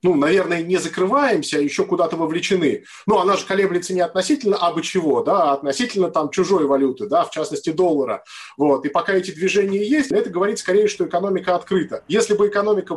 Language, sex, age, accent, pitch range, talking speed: Russian, male, 20-39, native, 175-225 Hz, 190 wpm